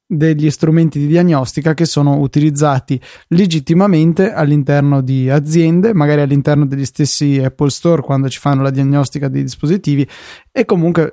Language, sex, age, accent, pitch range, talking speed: Italian, male, 20-39, native, 140-165 Hz, 140 wpm